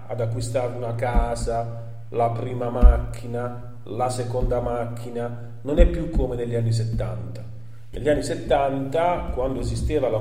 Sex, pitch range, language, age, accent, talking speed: male, 115-140 Hz, Italian, 40-59, native, 135 wpm